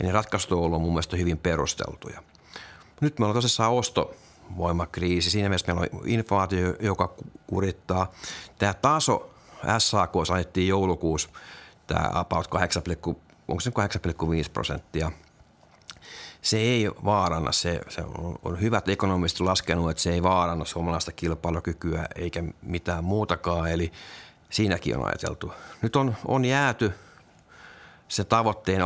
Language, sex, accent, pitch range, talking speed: Finnish, male, native, 85-105 Hz, 125 wpm